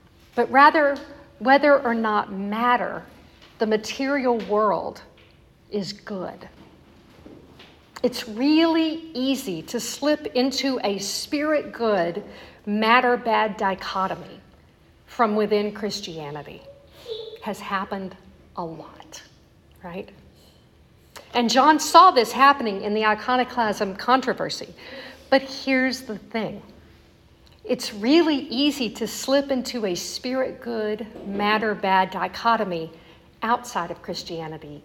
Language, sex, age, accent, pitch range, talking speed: English, female, 50-69, American, 200-260 Hz, 100 wpm